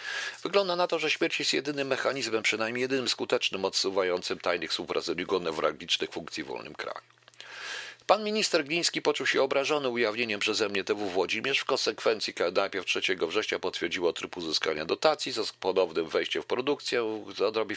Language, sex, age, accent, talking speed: Polish, male, 40-59, native, 160 wpm